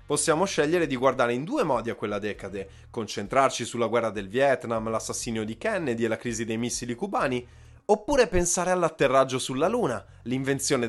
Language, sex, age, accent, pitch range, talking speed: Italian, male, 20-39, native, 115-160 Hz, 165 wpm